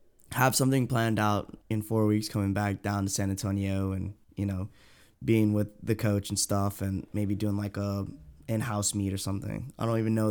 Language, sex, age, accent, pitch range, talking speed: English, male, 10-29, American, 100-115 Hz, 205 wpm